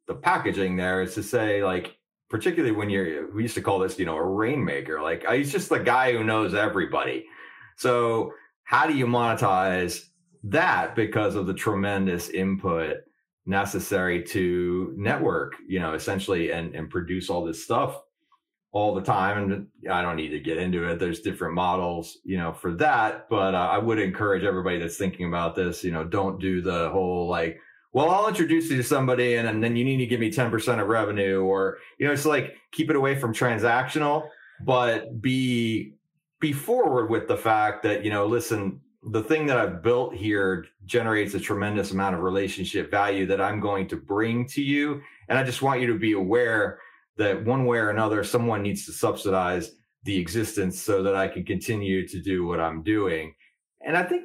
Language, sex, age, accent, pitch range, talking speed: English, male, 30-49, American, 95-125 Hz, 190 wpm